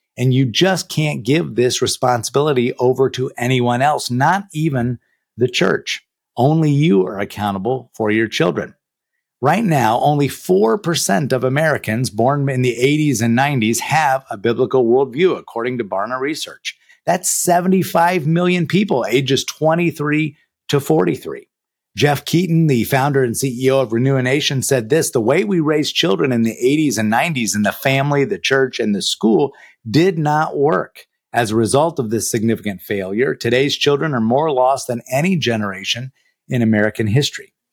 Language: English